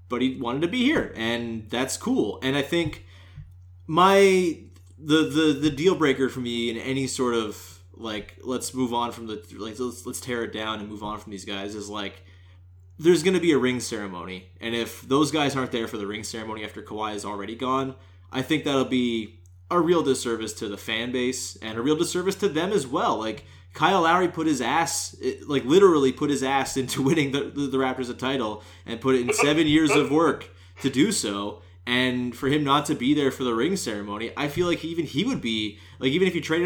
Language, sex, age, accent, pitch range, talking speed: English, male, 20-39, American, 105-140 Hz, 230 wpm